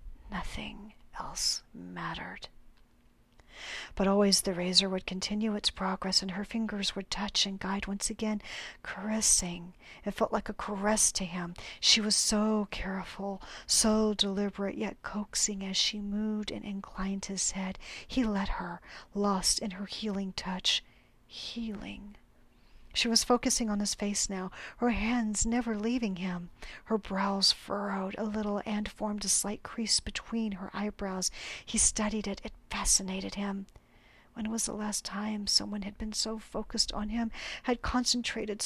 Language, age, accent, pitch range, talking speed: English, 40-59, American, 195-220 Hz, 150 wpm